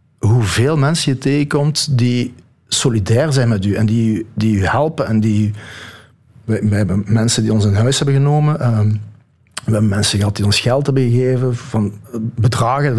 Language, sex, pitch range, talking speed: Dutch, male, 110-140 Hz, 175 wpm